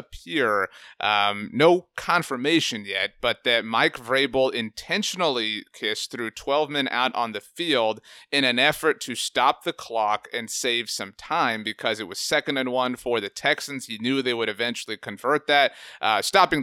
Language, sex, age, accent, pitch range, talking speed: English, male, 30-49, American, 120-150 Hz, 170 wpm